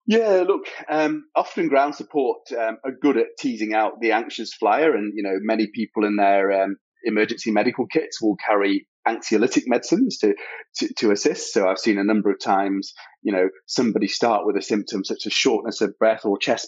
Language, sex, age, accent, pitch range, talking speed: English, male, 30-49, British, 100-145 Hz, 200 wpm